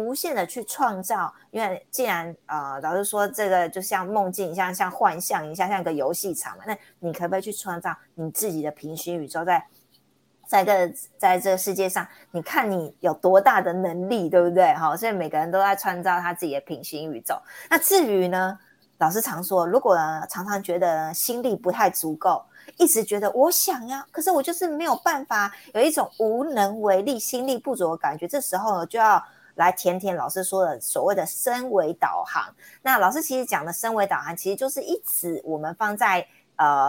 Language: Chinese